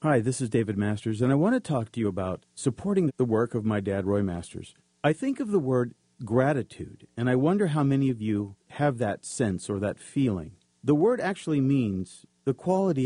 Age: 50-69